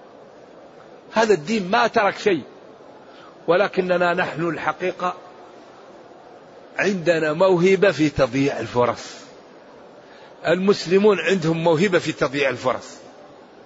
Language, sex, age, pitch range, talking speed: Arabic, male, 50-69, 165-205 Hz, 85 wpm